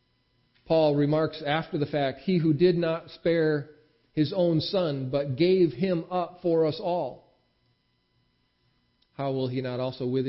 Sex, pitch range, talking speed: male, 130-180 Hz, 150 wpm